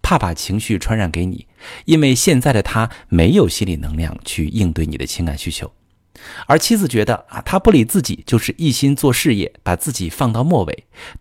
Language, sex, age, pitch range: Chinese, male, 50-69, 90-125 Hz